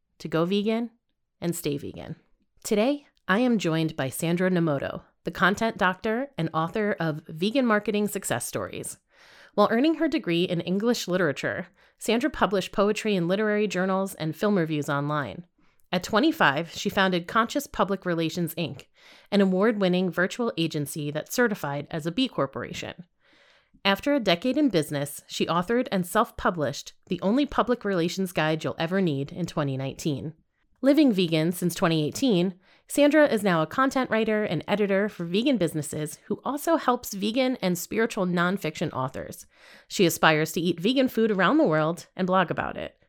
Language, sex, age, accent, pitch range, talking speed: English, female, 30-49, American, 160-220 Hz, 155 wpm